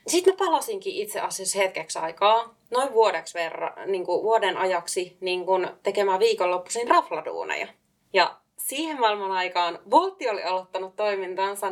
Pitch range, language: 175-225 Hz, Finnish